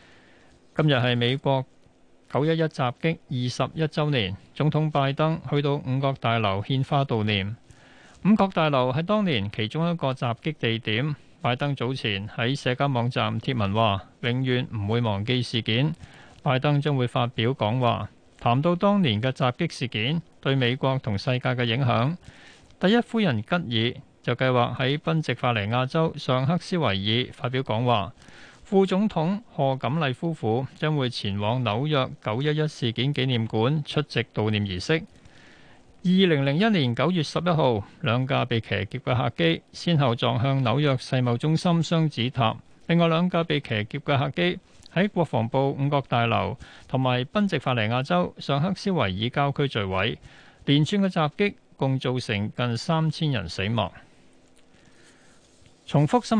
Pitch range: 115-155 Hz